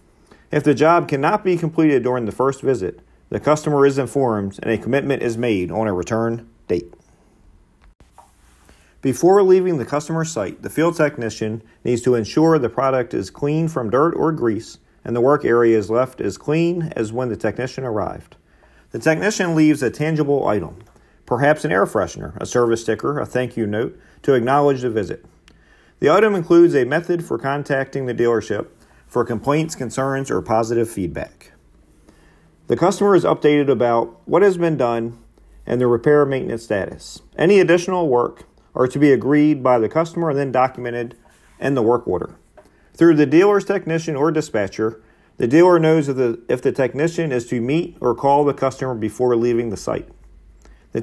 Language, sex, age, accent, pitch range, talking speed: English, male, 40-59, American, 115-155 Hz, 175 wpm